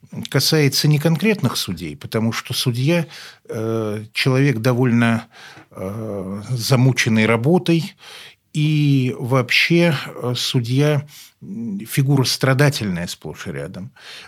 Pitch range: 110-140 Hz